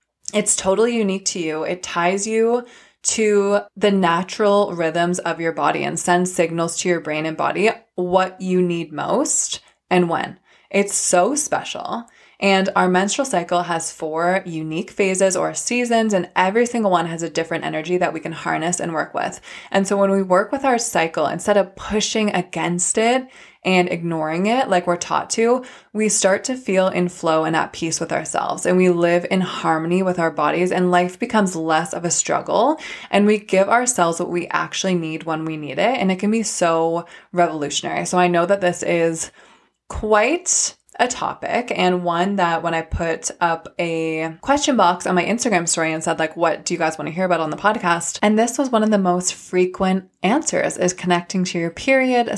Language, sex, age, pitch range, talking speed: English, female, 20-39, 170-210 Hz, 195 wpm